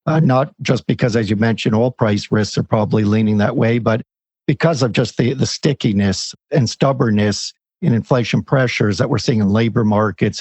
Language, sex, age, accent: English, male, 60-79, American